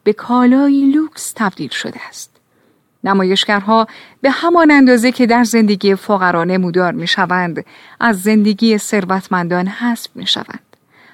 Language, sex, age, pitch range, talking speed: Persian, female, 30-49, 185-260 Hz, 125 wpm